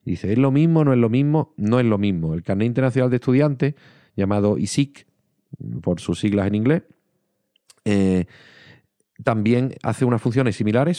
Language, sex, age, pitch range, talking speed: English, male, 40-59, 95-125 Hz, 165 wpm